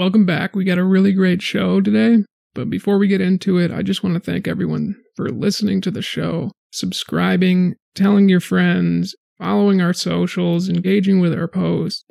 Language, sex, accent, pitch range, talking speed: English, male, American, 175-195 Hz, 185 wpm